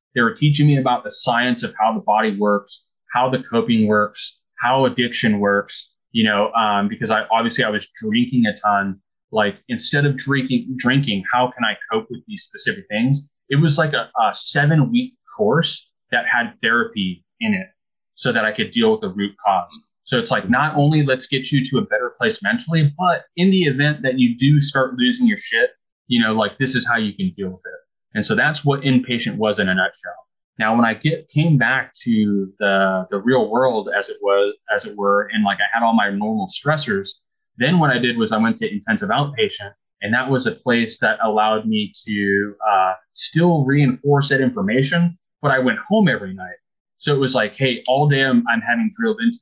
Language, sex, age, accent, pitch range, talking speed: English, male, 20-39, American, 115-165 Hz, 215 wpm